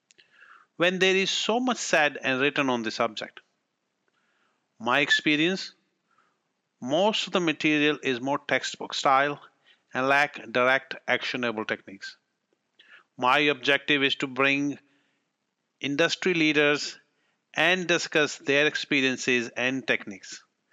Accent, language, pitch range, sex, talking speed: Indian, English, 125-155 Hz, male, 115 wpm